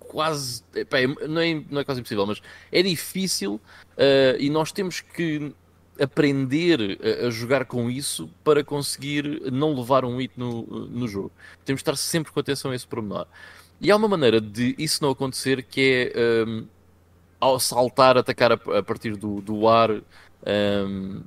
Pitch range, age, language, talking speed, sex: 105-135 Hz, 20-39, Portuguese, 170 wpm, male